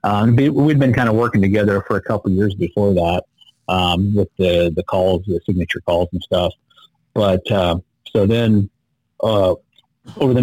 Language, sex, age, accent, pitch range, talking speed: English, male, 40-59, American, 95-115 Hz, 180 wpm